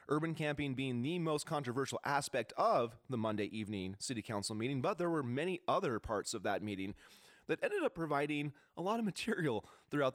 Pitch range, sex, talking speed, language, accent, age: 115-150 Hz, male, 190 wpm, English, American, 30-49